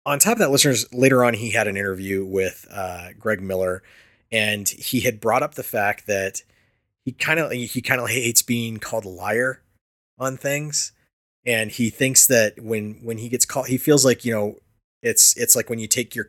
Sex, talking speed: male, 210 wpm